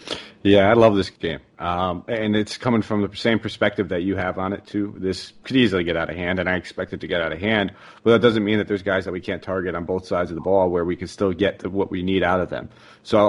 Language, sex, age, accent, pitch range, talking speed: English, male, 30-49, American, 90-105 Hz, 295 wpm